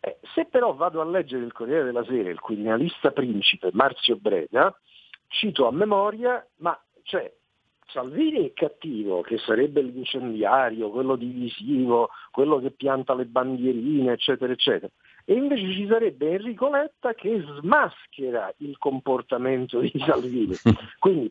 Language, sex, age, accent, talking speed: Italian, male, 50-69, native, 135 wpm